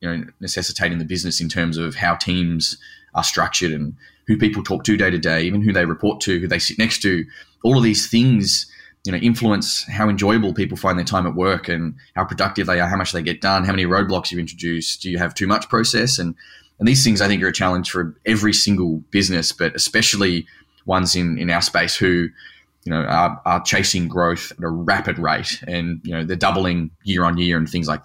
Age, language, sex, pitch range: 10-29, English, male, 85-100 Hz